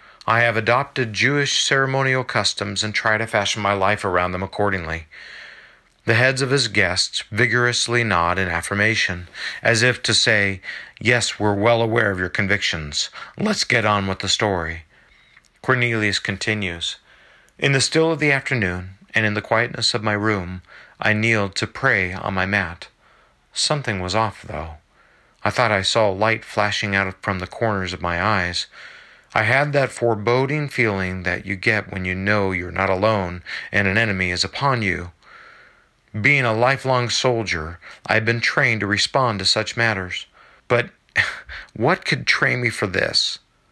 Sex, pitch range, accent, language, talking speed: male, 95-120 Hz, American, English, 165 wpm